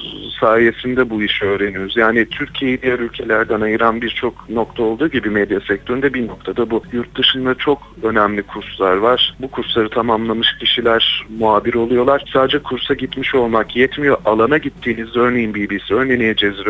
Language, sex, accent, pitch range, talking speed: Turkish, male, native, 115-145 Hz, 145 wpm